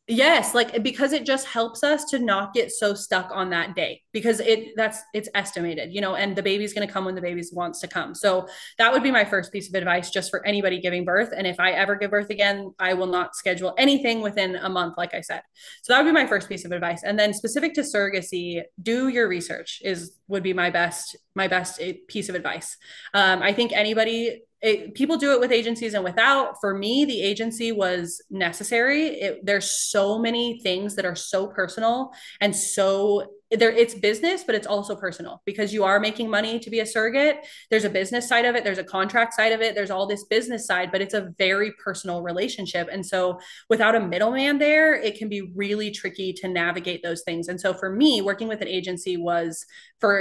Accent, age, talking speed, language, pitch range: American, 20-39, 220 wpm, English, 185-230 Hz